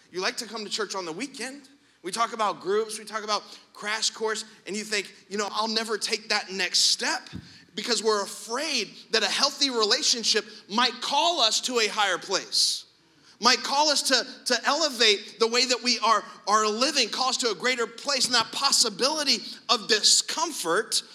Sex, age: male, 30-49